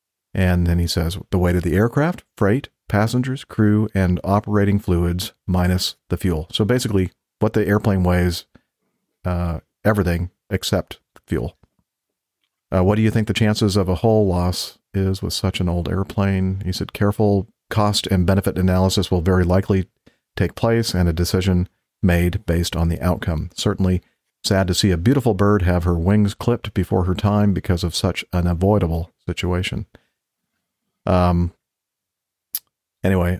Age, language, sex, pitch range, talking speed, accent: 50-69, English, male, 90-105 Hz, 155 wpm, American